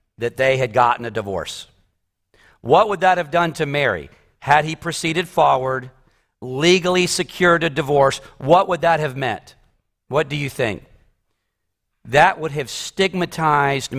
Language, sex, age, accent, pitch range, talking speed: English, male, 50-69, American, 120-170 Hz, 145 wpm